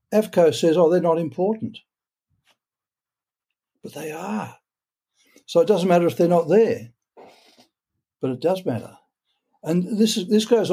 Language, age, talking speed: English, 60-79, 145 wpm